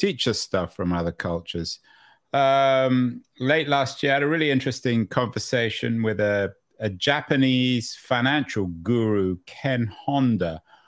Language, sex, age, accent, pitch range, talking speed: English, male, 50-69, British, 105-125 Hz, 130 wpm